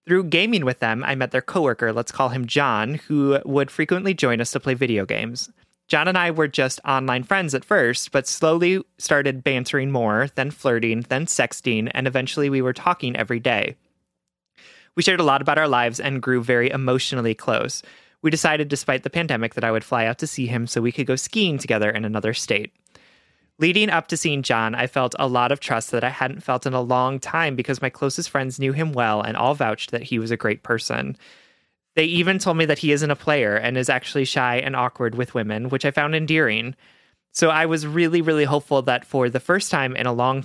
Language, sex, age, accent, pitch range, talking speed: English, male, 30-49, American, 120-150 Hz, 225 wpm